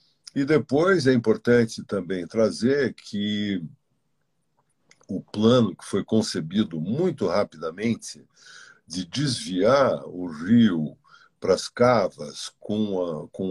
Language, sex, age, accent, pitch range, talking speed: Portuguese, male, 60-79, Brazilian, 90-135 Hz, 105 wpm